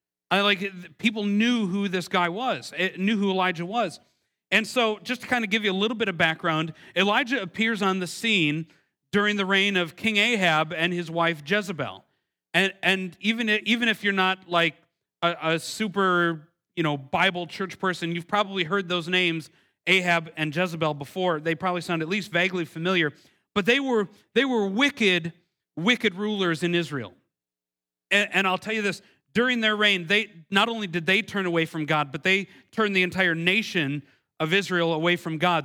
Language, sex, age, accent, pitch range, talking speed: English, male, 40-59, American, 160-195 Hz, 190 wpm